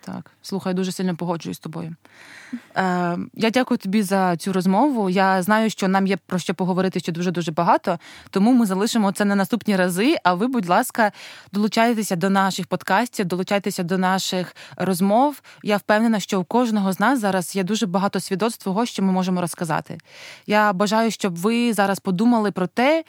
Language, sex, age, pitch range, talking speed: Ukrainian, female, 20-39, 180-215 Hz, 175 wpm